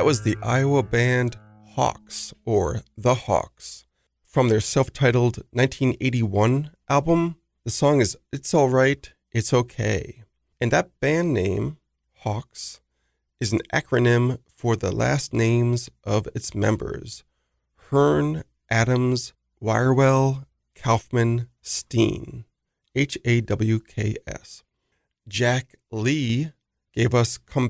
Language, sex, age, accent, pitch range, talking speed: English, male, 40-59, American, 105-130 Hz, 100 wpm